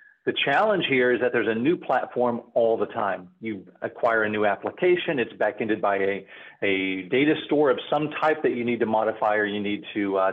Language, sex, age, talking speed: English, male, 40-59, 220 wpm